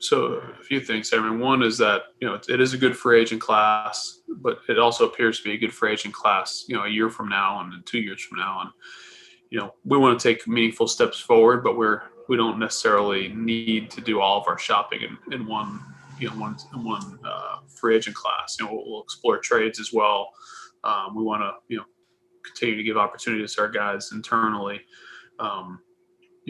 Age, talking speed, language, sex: 20-39, 220 wpm, English, male